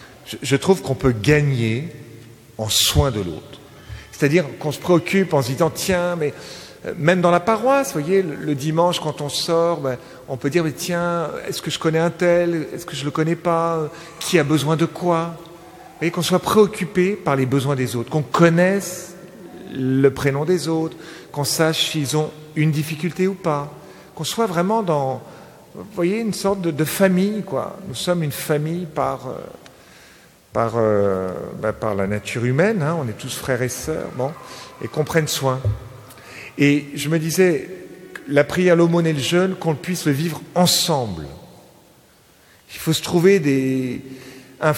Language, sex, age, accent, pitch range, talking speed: French, male, 40-59, French, 130-175 Hz, 180 wpm